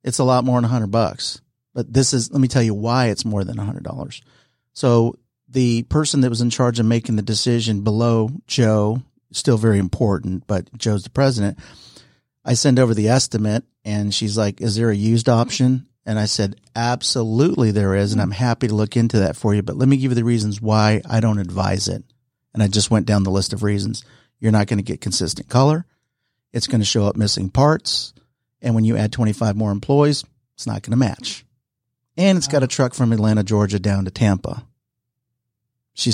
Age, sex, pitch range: 40-59, male, 105-125 Hz